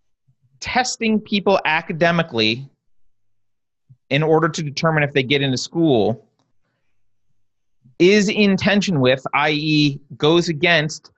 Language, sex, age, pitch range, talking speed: English, male, 30-49, 130-185 Hz, 100 wpm